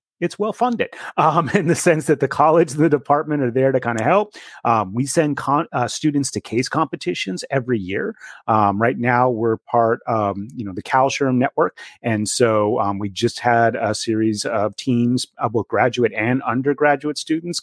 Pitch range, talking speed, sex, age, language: 110-150 Hz, 175 wpm, male, 30-49, English